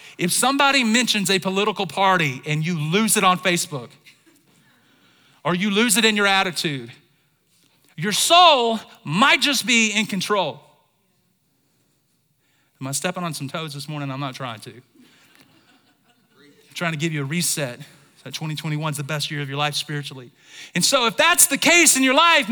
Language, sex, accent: English, male, American